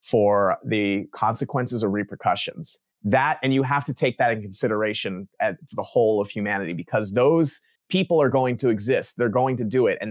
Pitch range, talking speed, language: 105-140 Hz, 190 wpm, English